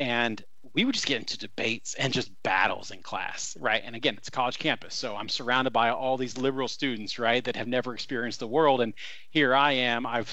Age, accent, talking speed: 30-49, American, 225 wpm